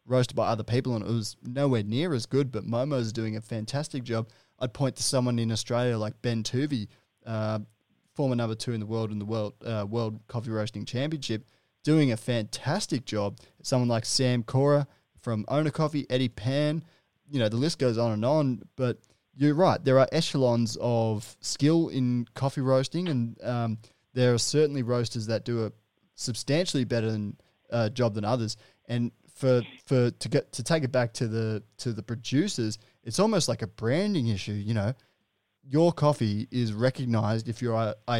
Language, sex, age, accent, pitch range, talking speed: English, male, 20-39, Australian, 110-130 Hz, 185 wpm